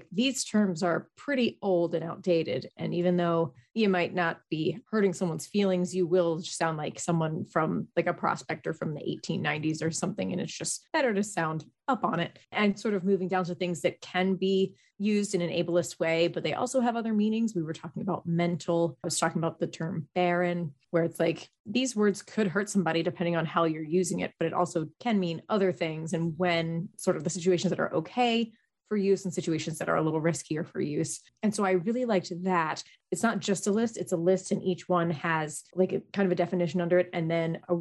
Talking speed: 230 wpm